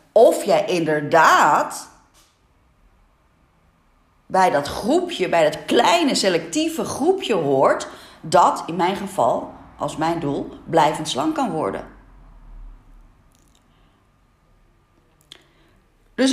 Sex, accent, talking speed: female, Dutch, 90 wpm